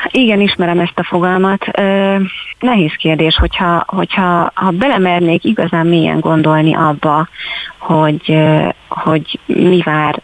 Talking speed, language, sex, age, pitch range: 110 wpm, Hungarian, female, 30-49, 155-180 Hz